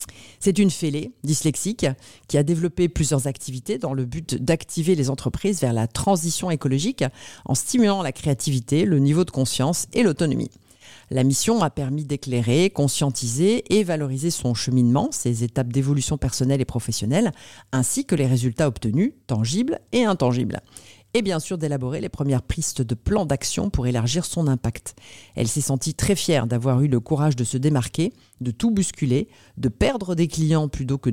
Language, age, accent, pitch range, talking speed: French, 40-59, French, 125-160 Hz, 170 wpm